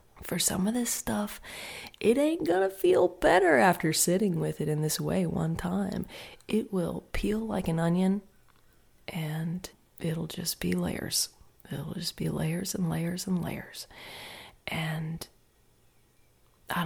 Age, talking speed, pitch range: 20-39, 140 wpm, 160-180 Hz